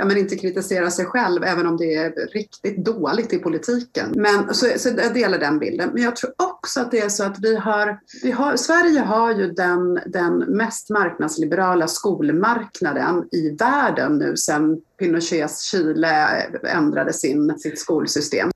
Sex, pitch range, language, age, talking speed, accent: female, 175-260 Hz, Swedish, 40-59, 170 wpm, native